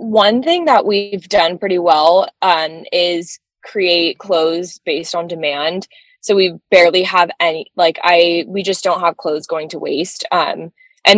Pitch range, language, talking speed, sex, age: 165-190 Hz, English, 165 wpm, female, 20-39